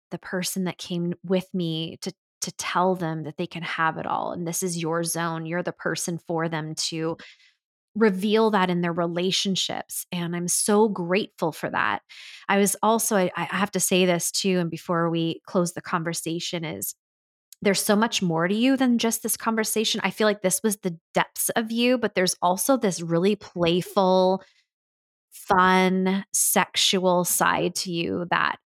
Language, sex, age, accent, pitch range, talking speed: English, female, 20-39, American, 170-200 Hz, 180 wpm